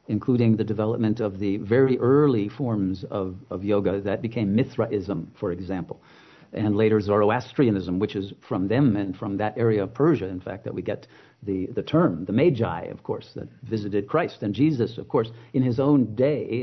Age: 50-69